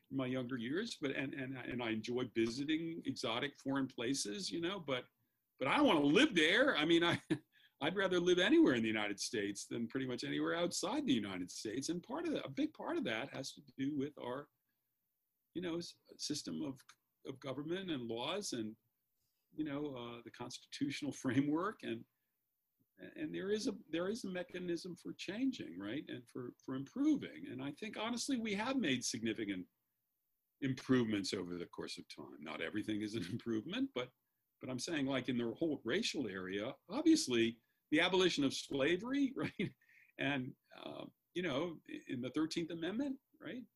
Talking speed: 180 wpm